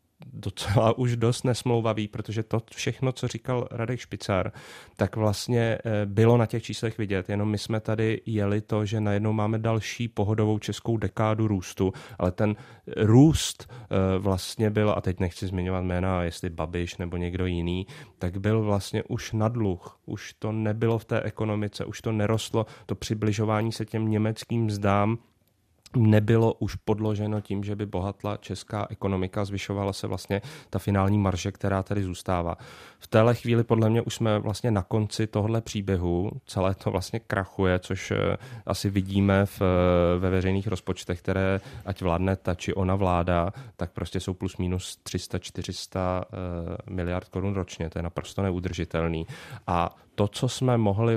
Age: 30-49